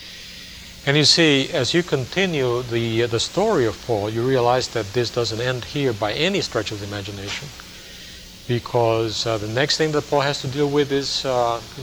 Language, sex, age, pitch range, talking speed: English, male, 40-59, 110-140 Hz, 200 wpm